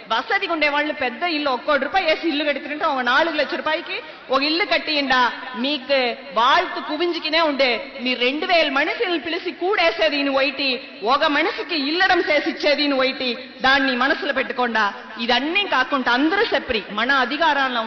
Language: Telugu